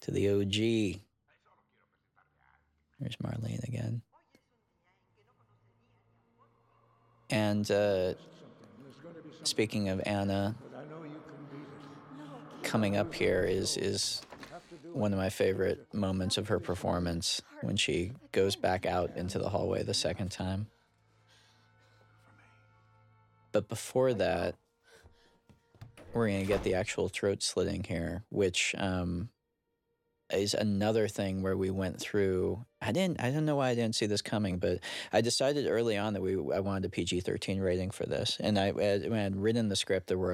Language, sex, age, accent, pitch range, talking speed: English, male, 20-39, American, 95-115 Hz, 135 wpm